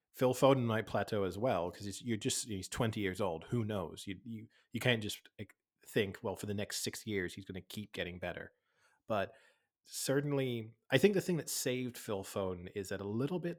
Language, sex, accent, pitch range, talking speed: English, male, American, 95-115 Hz, 210 wpm